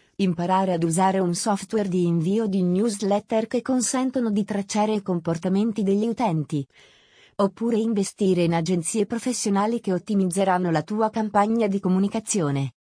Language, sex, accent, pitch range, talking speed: Italian, female, native, 180-220 Hz, 135 wpm